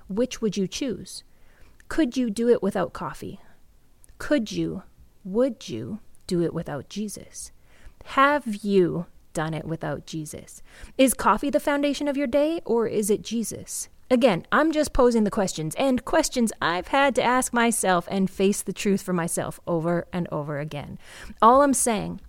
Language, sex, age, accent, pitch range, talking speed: English, female, 30-49, American, 180-255 Hz, 165 wpm